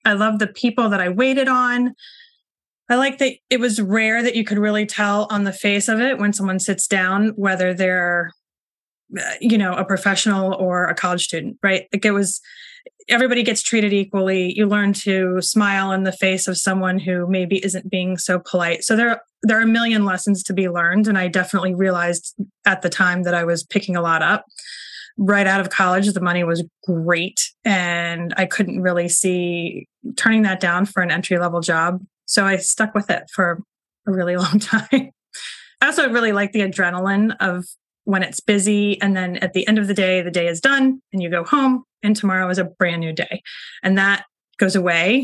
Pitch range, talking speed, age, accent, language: 180-215 Hz, 200 wpm, 20-39, American, English